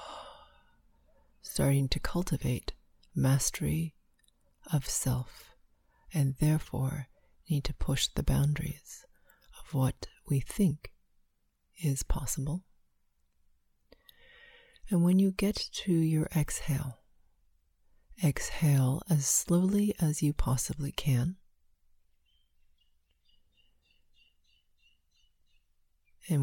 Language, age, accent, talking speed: English, 40-59, American, 75 wpm